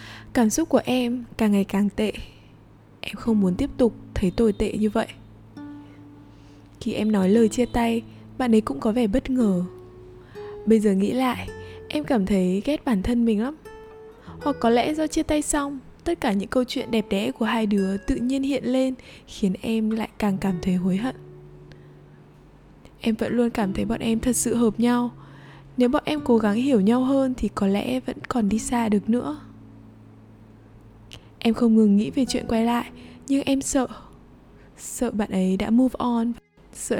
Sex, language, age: female, Vietnamese, 20-39